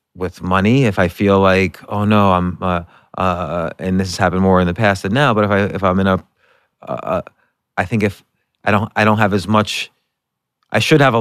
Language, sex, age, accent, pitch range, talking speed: English, male, 30-49, American, 95-110 Hz, 235 wpm